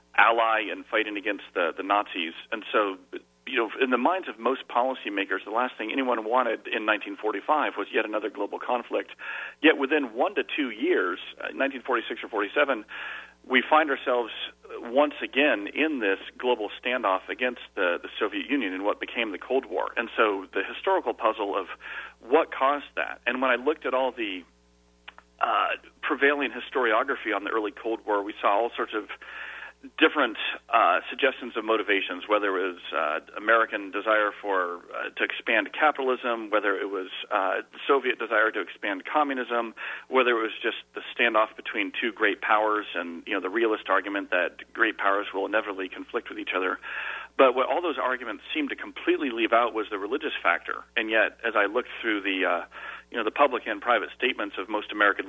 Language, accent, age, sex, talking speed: English, American, 40-59, male, 185 wpm